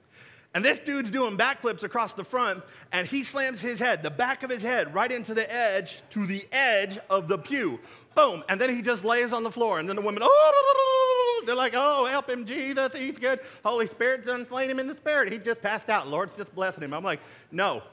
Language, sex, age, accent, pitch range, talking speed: English, male, 40-59, American, 205-265 Hz, 230 wpm